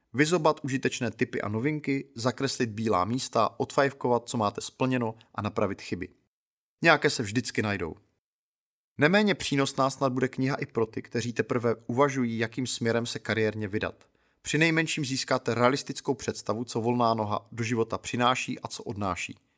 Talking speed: 150 wpm